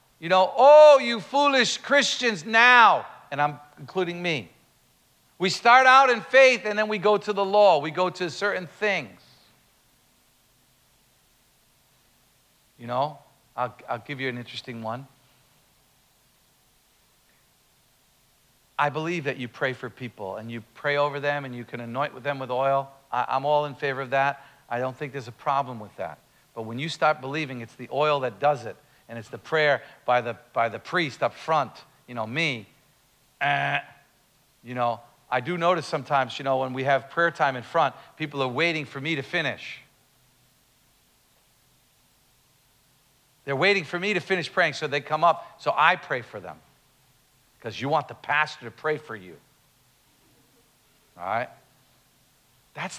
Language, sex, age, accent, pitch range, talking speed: English, male, 50-69, American, 130-175 Hz, 165 wpm